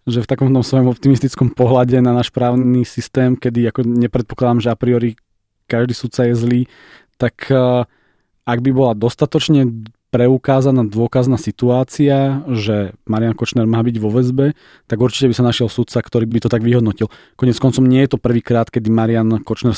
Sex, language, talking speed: male, Slovak, 165 wpm